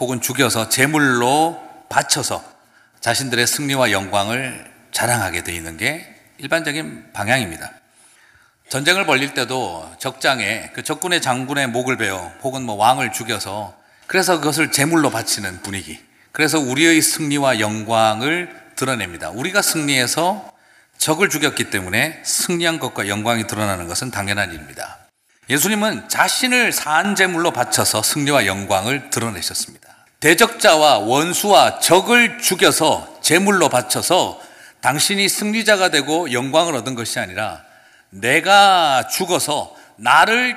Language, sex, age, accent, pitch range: Korean, male, 40-59, native, 115-175 Hz